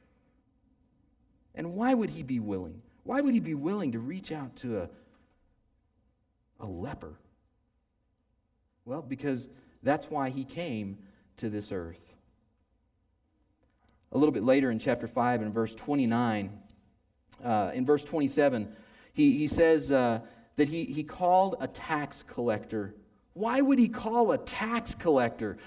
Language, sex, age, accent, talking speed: English, male, 40-59, American, 140 wpm